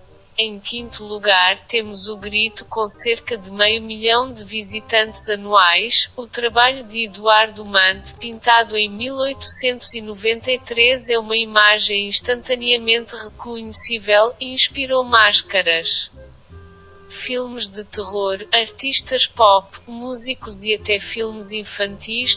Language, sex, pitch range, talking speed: Portuguese, female, 205-240 Hz, 105 wpm